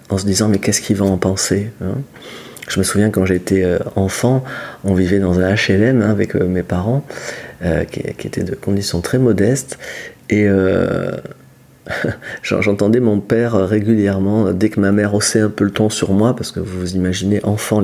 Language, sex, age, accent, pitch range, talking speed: French, male, 40-59, French, 100-125 Hz, 195 wpm